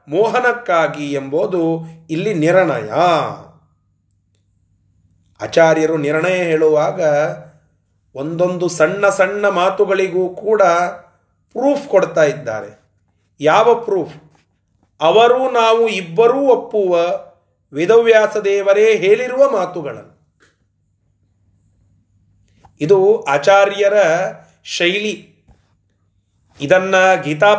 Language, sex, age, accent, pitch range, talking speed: Kannada, male, 30-49, native, 150-210 Hz, 65 wpm